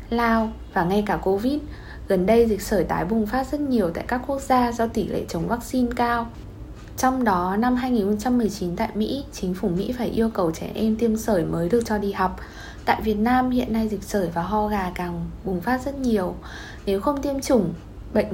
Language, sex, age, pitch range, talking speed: Vietnamese, female, 20-39, 195-240 Hz, 215 wpm